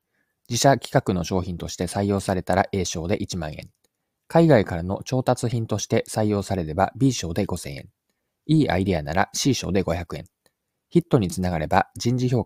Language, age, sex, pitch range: Japanese, 20-39, male, 90-130 Hz